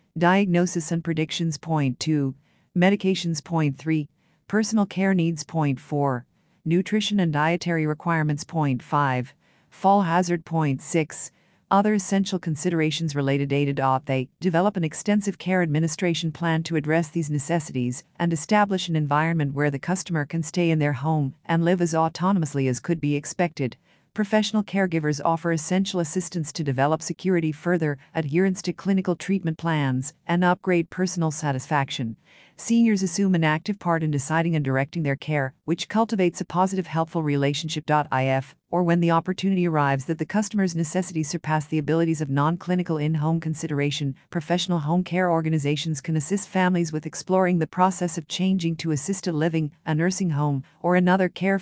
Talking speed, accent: 155 wpm, American